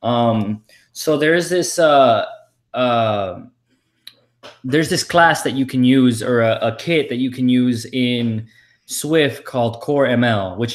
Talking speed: 155 wpm